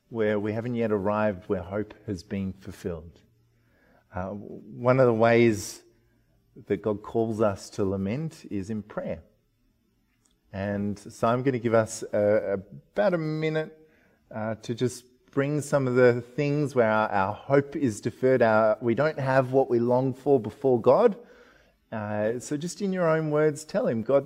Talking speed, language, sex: 175 wpm, English, male